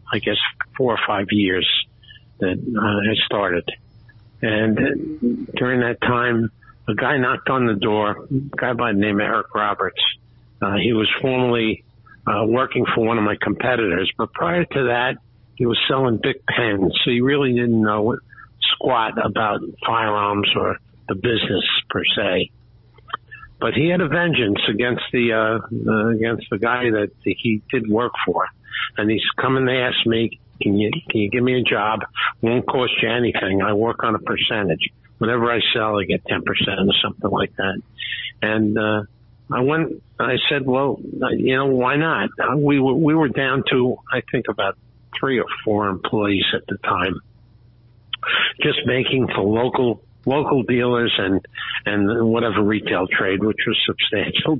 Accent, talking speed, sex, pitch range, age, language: American, 165 wpm, male, 105-125 Hz, 60-79, English